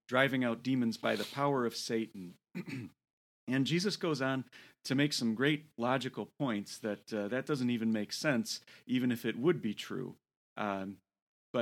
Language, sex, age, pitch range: English, male, 40-59, 110-135 Hz